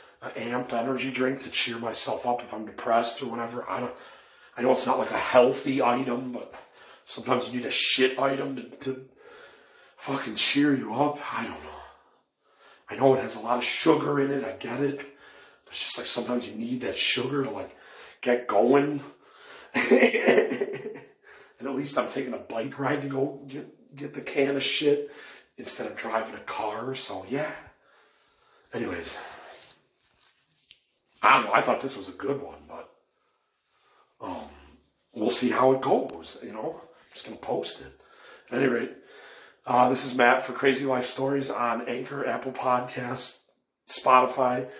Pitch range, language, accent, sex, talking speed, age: 125-145 Hz, English, American, male, 175 wpm, 40-59